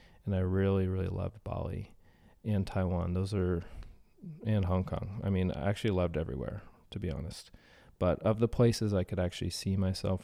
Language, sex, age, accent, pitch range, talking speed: English, male, 30-49, American, 90-110 Hz, 180 wpm